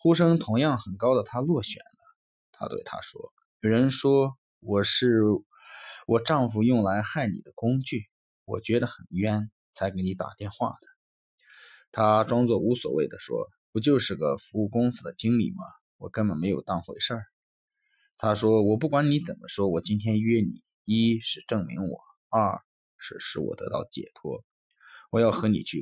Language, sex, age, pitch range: Chinese, male, 20-39, 105-160 Hz